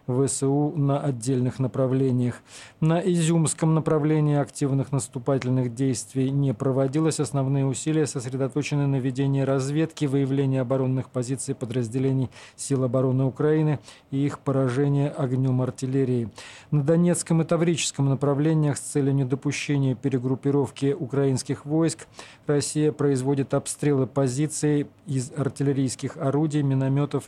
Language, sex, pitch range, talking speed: Russian, male, 130-145 Hz, 110 wpm